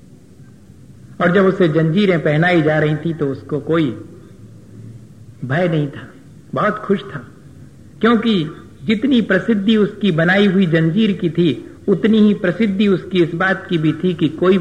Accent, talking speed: native, 150 wpm